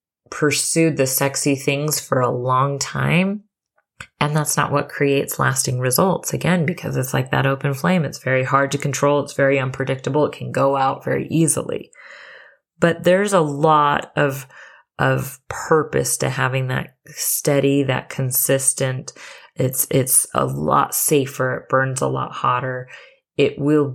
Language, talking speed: English, 155 wpm